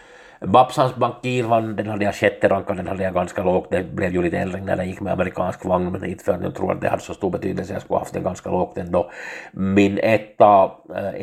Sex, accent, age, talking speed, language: male, Finnish, 50-69, 230 wpm, Swedish